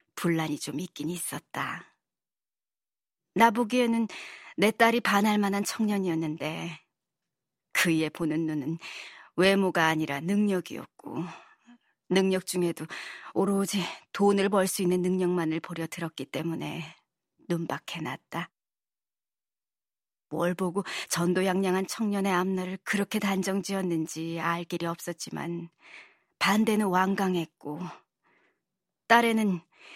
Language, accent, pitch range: Korean, native, 170-200 Hz